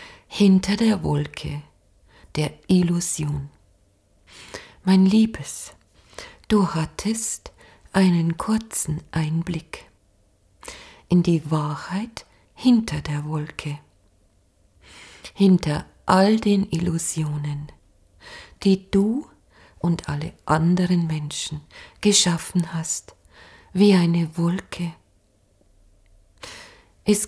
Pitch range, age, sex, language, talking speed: 150-190 Hz, 40-59, female, German, 75 wpm